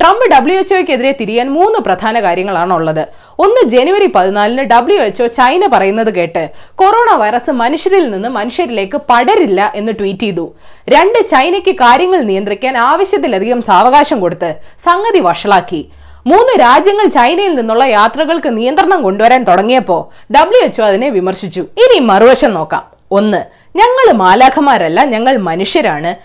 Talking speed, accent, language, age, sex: 120 wpm, native, Malayalam, 20-39, female